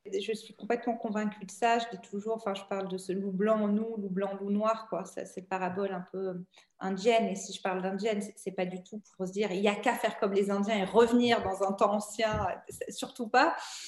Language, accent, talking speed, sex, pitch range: French, French, 255 wpm, female, 205-265 Hz